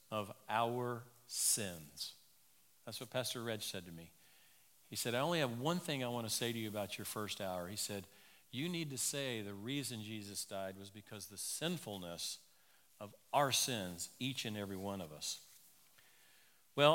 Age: 50-69